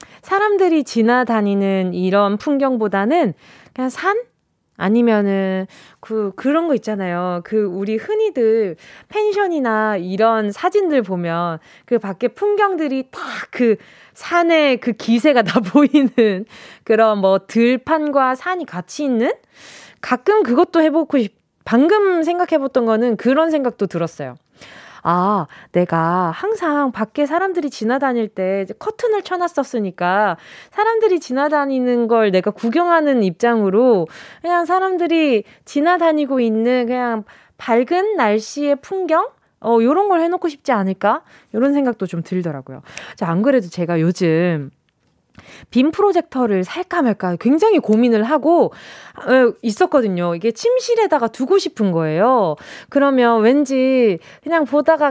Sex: female